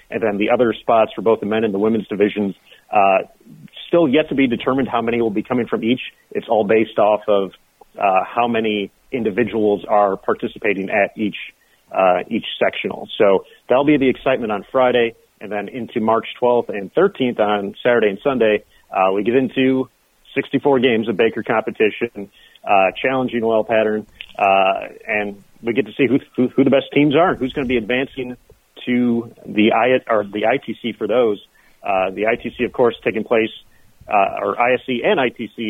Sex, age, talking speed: male, 40-59, 190 wpm